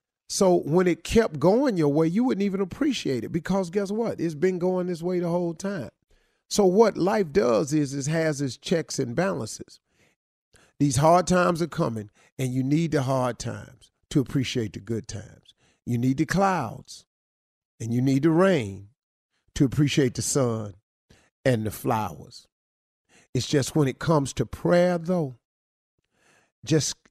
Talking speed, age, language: 165 wpm, 40-59, English